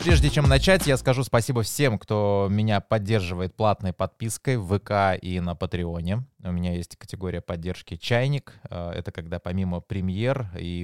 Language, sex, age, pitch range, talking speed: Russian, male, 20-39, 90-120 Hz, 155 wpm